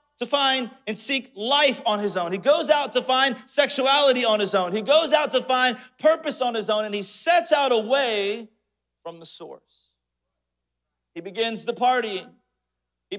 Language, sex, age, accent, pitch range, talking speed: English, male, 40-59, American, 160-255 Hz, 175 wpm